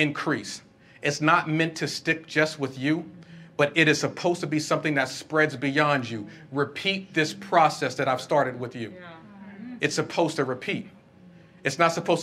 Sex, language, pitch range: male, English, 145-175 Hz